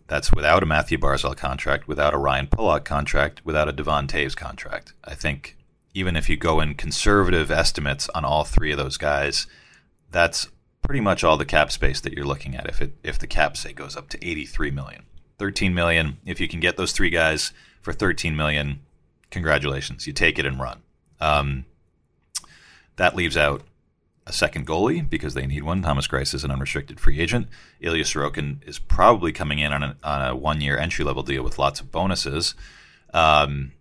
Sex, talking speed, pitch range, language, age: male, 195 wpm, 70-85 Hz, English, 40-59